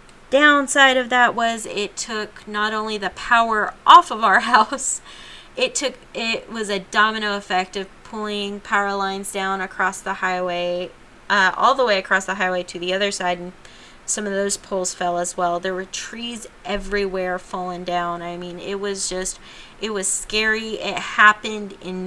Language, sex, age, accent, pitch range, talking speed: English, female, 20-39, American, 180-215 Hz, 175 wpm